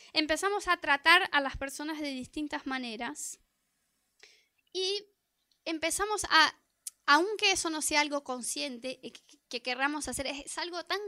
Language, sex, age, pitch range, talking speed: Spanish, female, 20-39, 275-375 Hz, 130 wpm